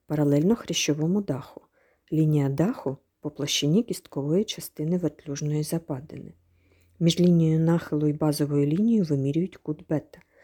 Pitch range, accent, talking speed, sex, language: 150-185 Hz, native, 115 wpm, female, Ukrainian